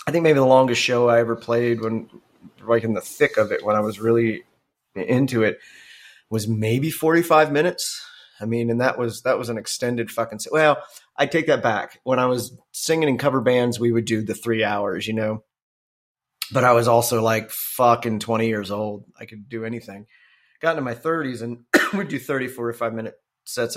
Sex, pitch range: male, 115-135 Hz